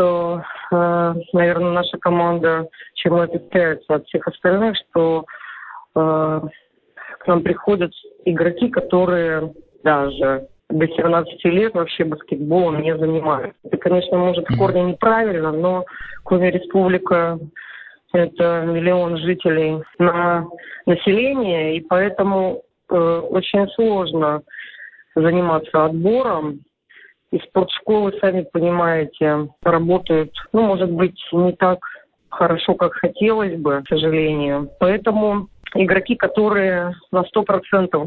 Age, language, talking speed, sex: 20-39, Russian, 105 wpm, female